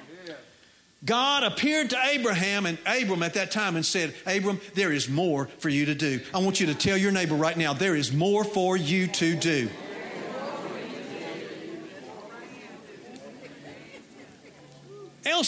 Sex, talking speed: male, 140 wpm